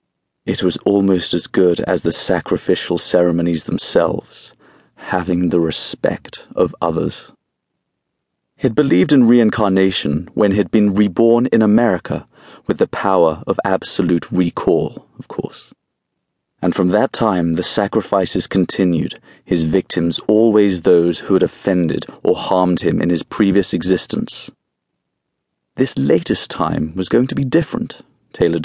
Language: English